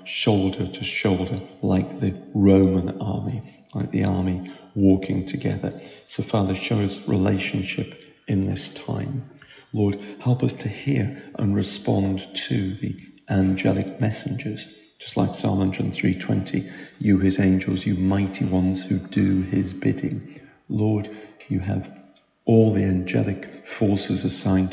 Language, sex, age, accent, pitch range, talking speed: English, male, 40-59, British, 95-100 Hz, 130 wpm